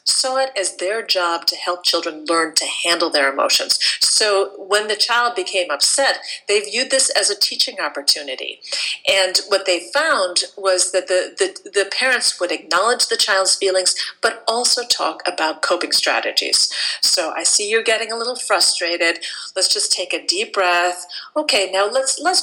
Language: English